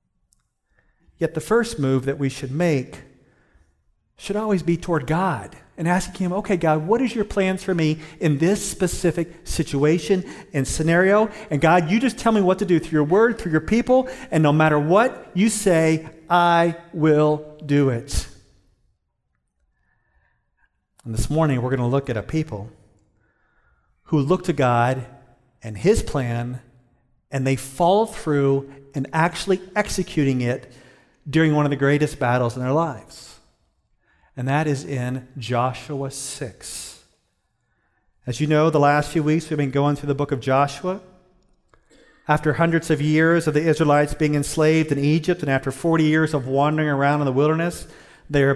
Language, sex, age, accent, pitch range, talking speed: English, male, 40-59, American, 135-170 Hz, 160 wpm